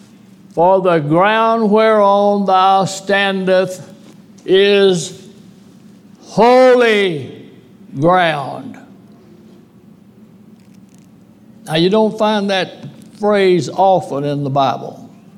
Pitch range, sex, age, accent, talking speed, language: 185-220 Hz, male, 60-79, American, 75 wpm, English